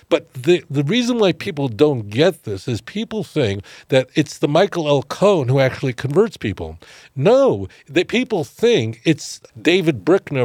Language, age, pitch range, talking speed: English, 60-79, 130-180 Hz, 165 wpm